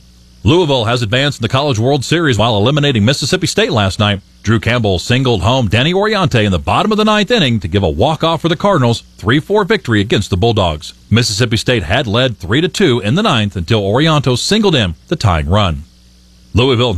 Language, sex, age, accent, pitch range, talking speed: English, male, 40-59, American, 100-145 Hz, 195 wpm